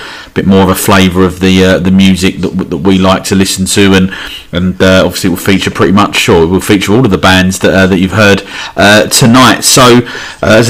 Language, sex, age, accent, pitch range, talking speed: English, male, 30-49, British, 90-105 Hz, 260 wpm